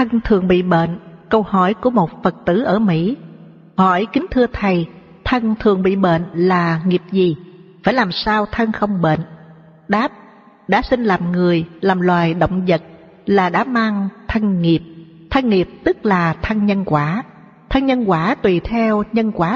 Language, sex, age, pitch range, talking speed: Vietnamese, female, 60-79, 175-220 Hz, 175 wpm